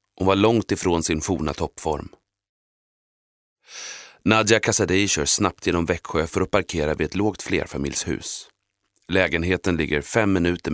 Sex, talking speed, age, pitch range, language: male, 135 wpm, 30-49, 80-100 Hz, Swedish